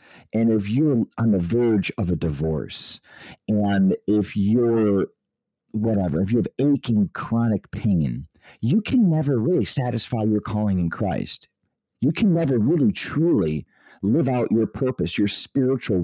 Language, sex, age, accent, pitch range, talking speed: English, male, 40-59, American, 100-135 Hz, 145 wpm